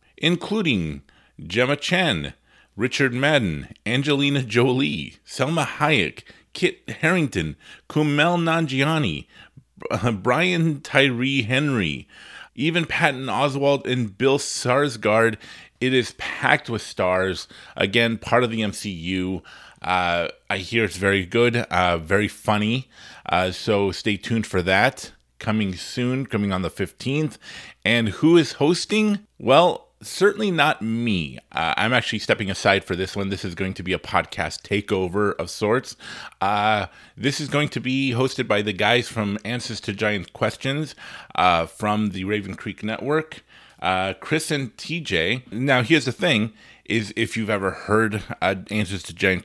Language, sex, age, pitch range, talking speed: English, male, 30-49, 100-135 Hz, 140 wpm